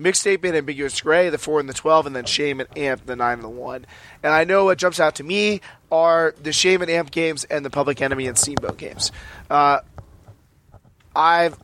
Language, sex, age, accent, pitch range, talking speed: English, male, 20-39, American, 135-180 Hz, 215 wpm